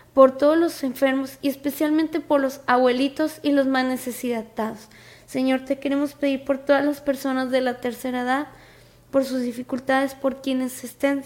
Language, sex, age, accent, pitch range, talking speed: Spanish, female, 20-39, Mexican, 250-280 Hz, 165 wpm